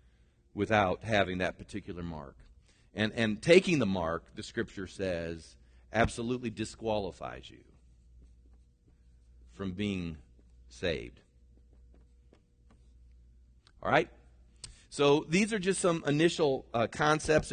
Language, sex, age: English, male, 40-59